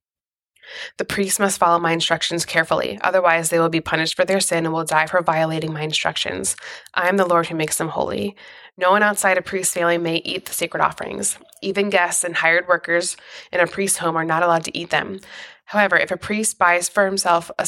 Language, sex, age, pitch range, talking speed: English, female, 20-39, 160-185 Hz, 215 wpm